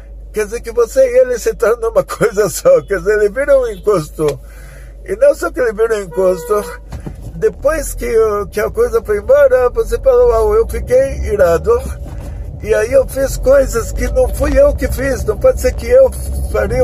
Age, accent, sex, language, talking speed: 50-69, Brazilian, male, Portuguese, 200 wpm